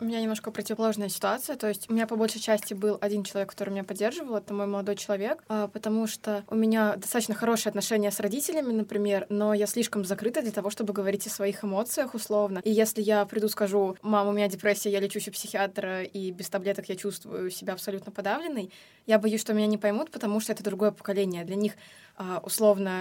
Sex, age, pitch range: female, 20-39, 200-220 Hz